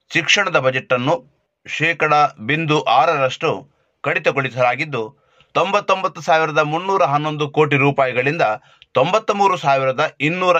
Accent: native